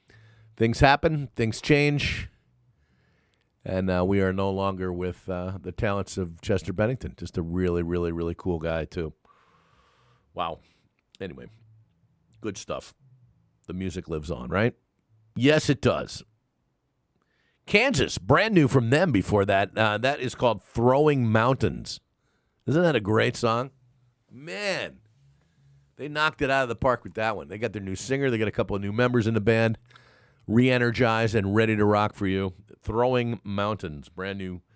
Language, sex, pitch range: English, male, 100-130 Hz